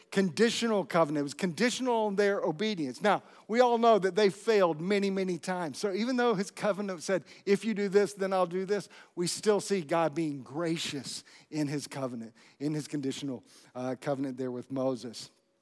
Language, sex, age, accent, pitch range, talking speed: English, male, 50-69, American, 165-205 Hz, 185 wpm